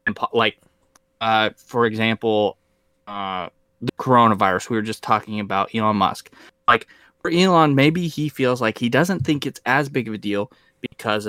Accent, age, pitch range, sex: American, 20-39, 105-130 Hz, male